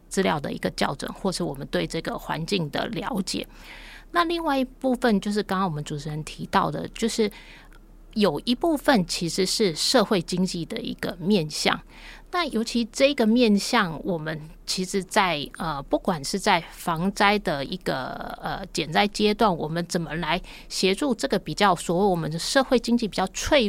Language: Chinese